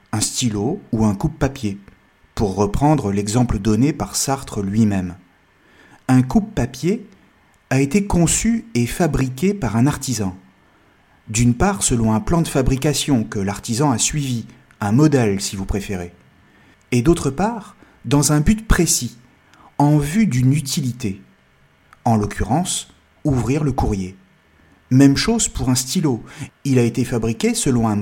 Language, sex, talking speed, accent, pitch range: French, male, 140 wpm, French, 110-155 Hz